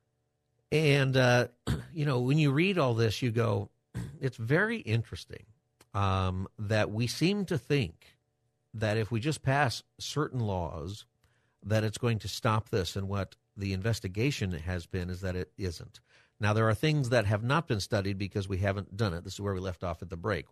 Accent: American